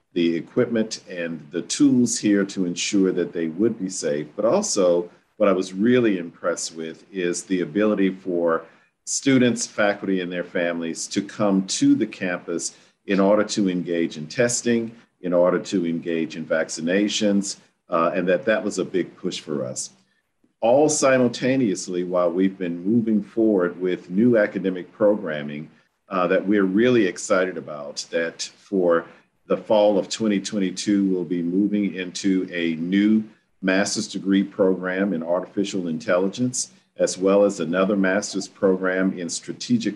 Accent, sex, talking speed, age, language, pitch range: American, male, 150 wpm, 50-69, English, 85-105 Hz